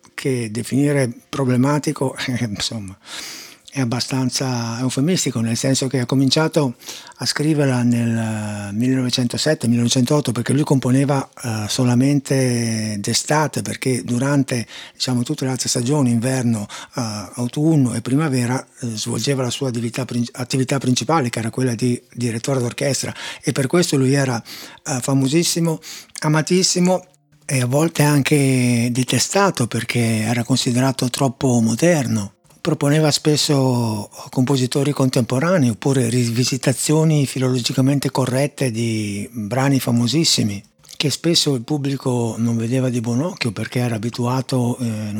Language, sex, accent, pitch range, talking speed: Italian, male, native, 120-140 Hz, 115 wpm